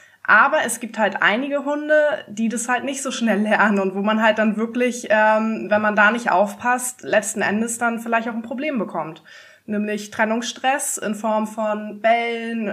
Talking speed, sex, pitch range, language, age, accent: 185 wpm, female, 200-235 Hz, German, 20-39, German